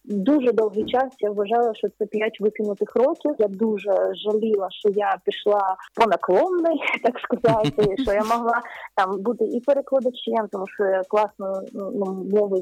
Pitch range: 200-245 Hz